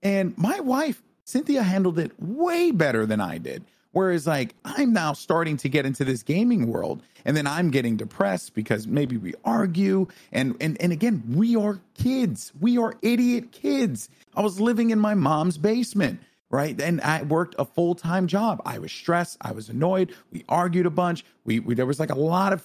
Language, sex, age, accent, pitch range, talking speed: English, male, 40-59, American, 125-175 Hz, 195 wpm